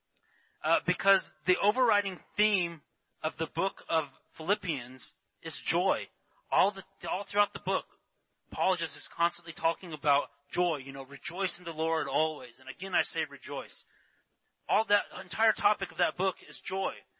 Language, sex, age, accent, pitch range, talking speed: English, male, 30-49, American, 160-205 Hz, 160 wpm